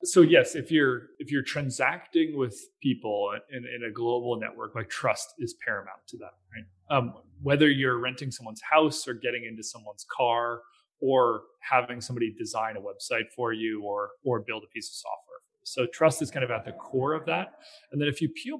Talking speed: 200 wpm